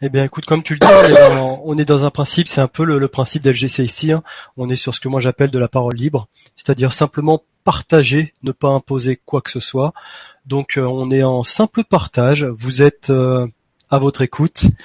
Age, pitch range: 30-49, 135-165 Hz